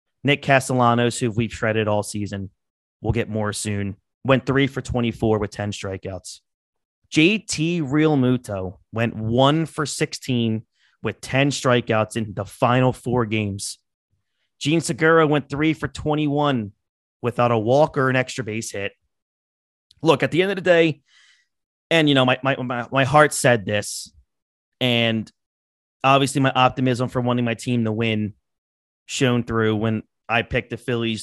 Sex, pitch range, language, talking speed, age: male, 110-145 Hz, English, 155 wpm, 30-49